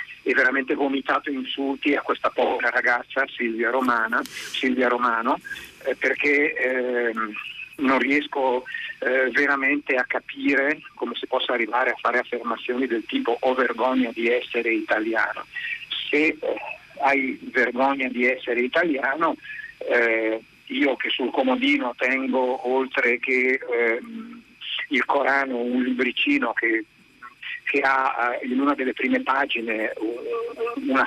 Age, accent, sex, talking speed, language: 50-69, native, male, 125 wpm, Italian